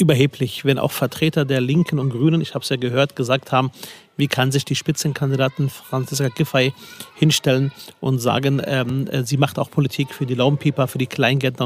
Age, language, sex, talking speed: 40-59, German, male, 185 wpm